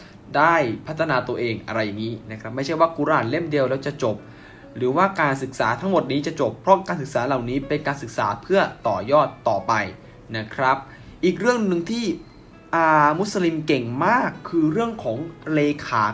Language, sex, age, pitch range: Thai, male, 20-39, 125-160 Hz